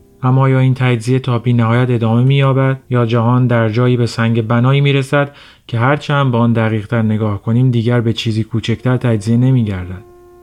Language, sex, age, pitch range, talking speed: Persian, male, 30-49, 115-135 Hz, 180 wpm